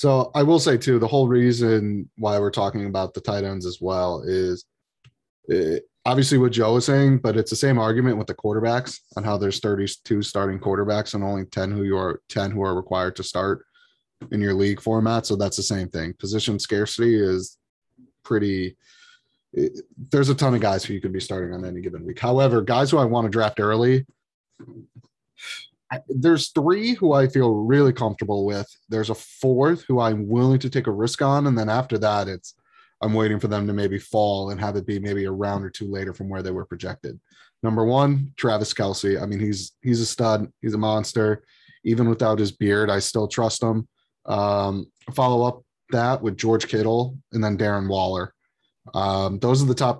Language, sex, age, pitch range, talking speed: English, male, 20-39, 100-125 Hz, 205 wpm